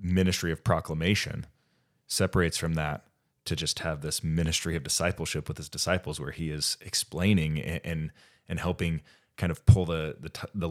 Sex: male